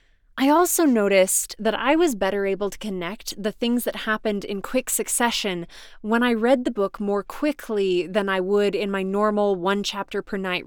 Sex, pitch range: female, 195-255 Hz